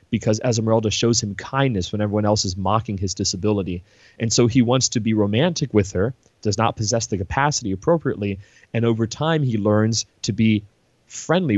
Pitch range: 100-120 Hz